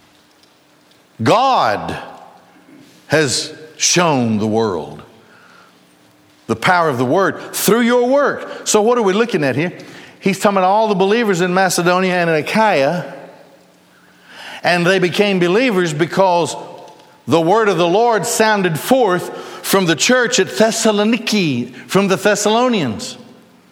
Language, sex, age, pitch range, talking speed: English, male, 60-79, 155-215 Hz, 130 wpm